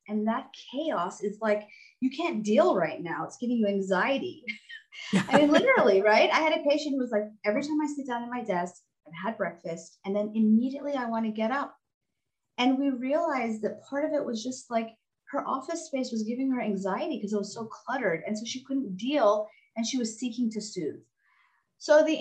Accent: American